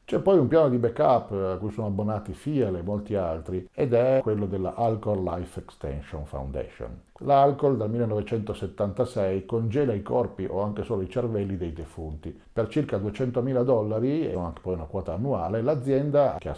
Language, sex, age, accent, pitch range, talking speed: Italian, male, 50-69, native, 90-120 Hz, 175 wpm